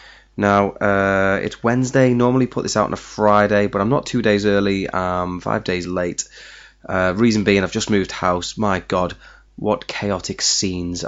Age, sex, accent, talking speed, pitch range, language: 20-39, male, British, 180 wpm, 90-100 Hz, English